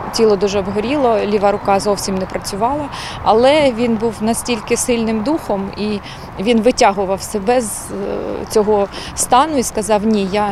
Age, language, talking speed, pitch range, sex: 20-39, Ukrainian, 145 wpm, 200-230 Hz, female